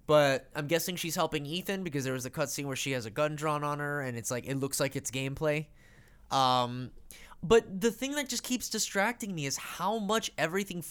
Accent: American